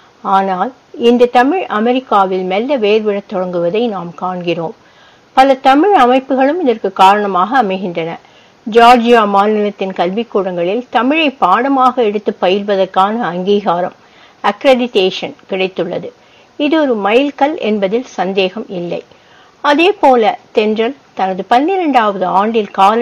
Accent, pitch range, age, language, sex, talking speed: Indian, 195-270 Hz, 60-79, English, female, 100 wpm